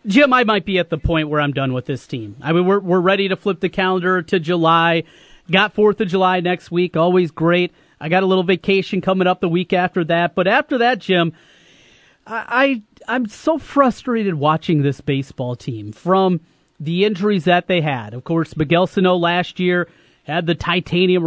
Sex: male